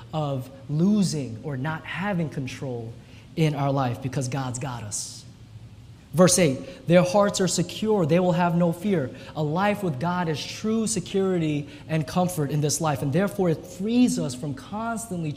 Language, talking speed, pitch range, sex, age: English, 170 wpm, 125-170 Hz, male, 20-39